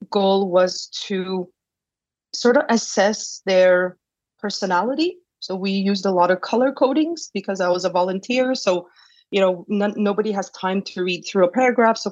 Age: 30-49